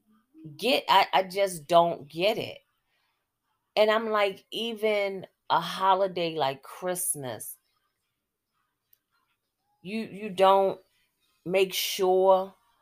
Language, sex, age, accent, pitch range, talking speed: English, female, 30-49, American, 155-195 Hz, 95 wpm